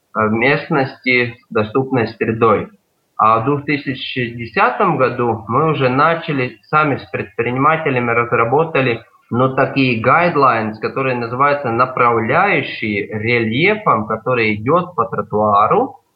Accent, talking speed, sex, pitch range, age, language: native, 95 wpm, male, 115-165 Hz, 20-39, Russian